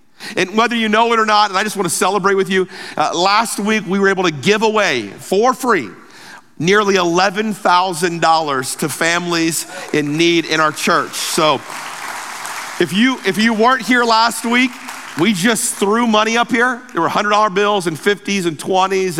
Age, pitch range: 50-69, 145-205 Hz